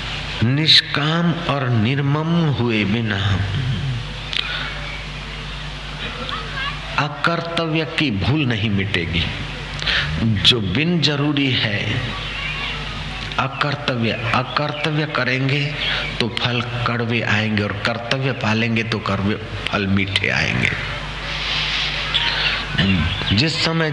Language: Hindi